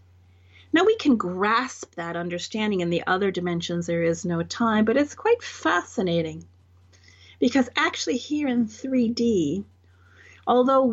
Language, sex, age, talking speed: English, female, 40-59, 130 wpm